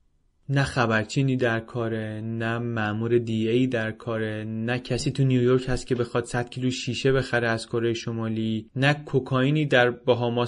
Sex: male